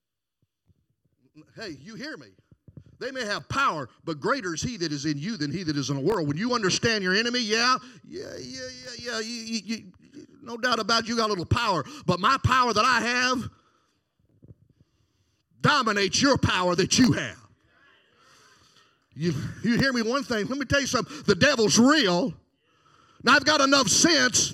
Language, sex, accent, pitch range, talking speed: English, male, American, 220-280 Hz, 180 wpm